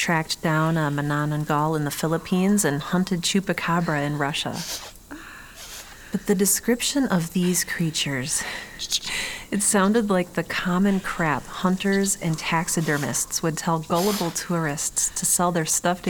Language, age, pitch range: English, 30-49, 160-185 Hz